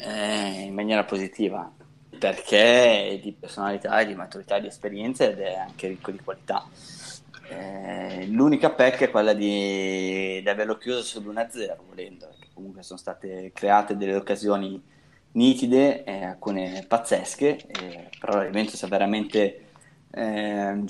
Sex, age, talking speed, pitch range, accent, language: male, 20-39, 130 wpm, 95-110 Hz, native, Italian